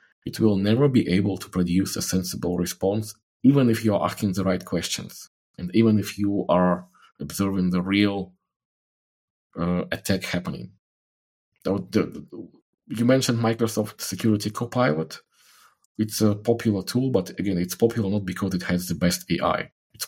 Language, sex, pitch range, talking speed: English, male, 90-110 Hz, 150 wpm